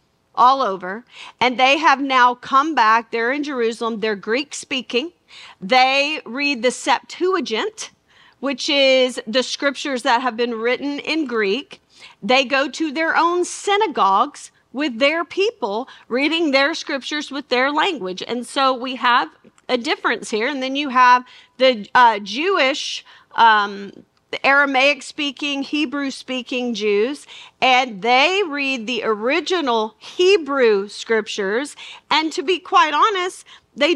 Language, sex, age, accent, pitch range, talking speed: English, female, 40-59, American, 250-310 Hz, 130 wpm